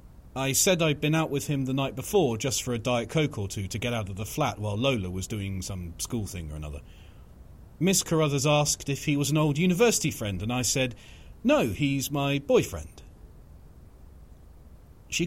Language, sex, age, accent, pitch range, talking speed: English, male, 40-59, British, 85-135 Hz, 195 wpm